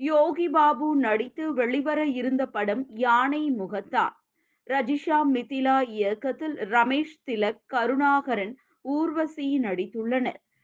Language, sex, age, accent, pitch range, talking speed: Tamil, female, 20-39, native, 235-285 Hz, 90 wpm